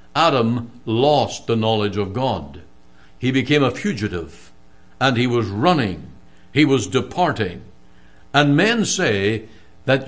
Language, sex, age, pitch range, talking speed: English, male, 60-79, 115-150 Hz, 125 wpm